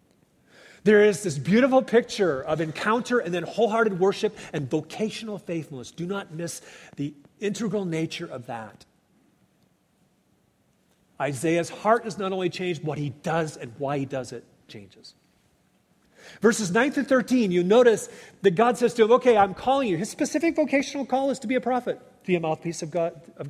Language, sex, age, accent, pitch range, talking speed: English, male, 40-59, American, 150-245 Hz, 165 wpm